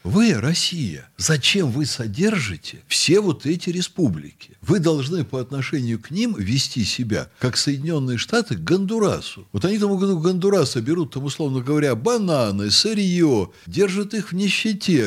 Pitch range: 130-195 Hz